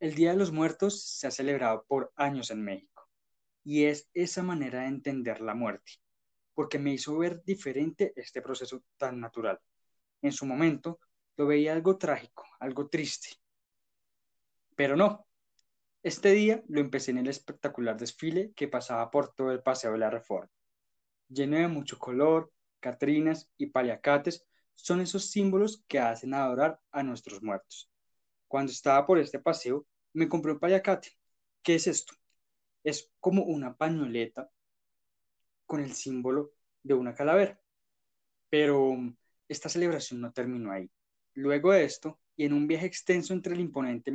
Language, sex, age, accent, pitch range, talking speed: Spanish, male, 20-39, Colombian, 125-165 Hz, 150 wpm